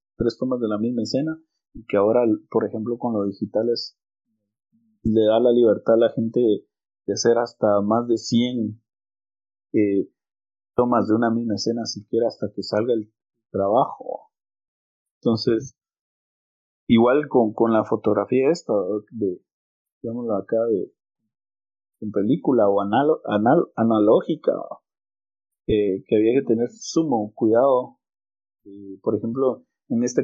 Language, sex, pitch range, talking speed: Spanish, male, 110-125 Hz, 135 wpm